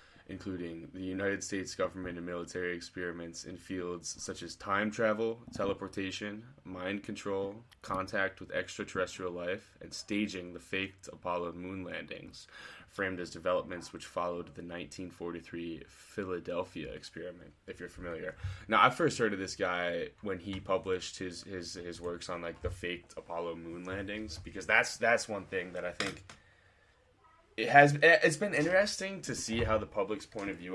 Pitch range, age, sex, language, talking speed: 90-105 Hz, 10-29, male, English, 160 wpm